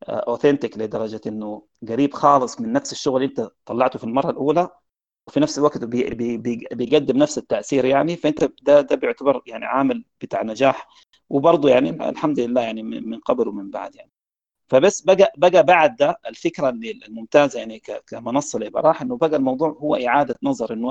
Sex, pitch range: male, 120-165 Hz